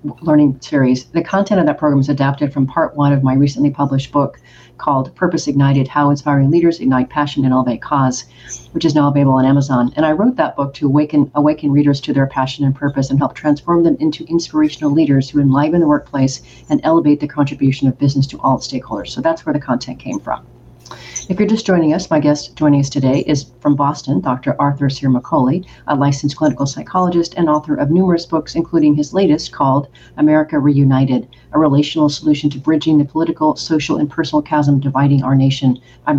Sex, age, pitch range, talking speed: female, 40-59, 135-155 Hz, 200 wpm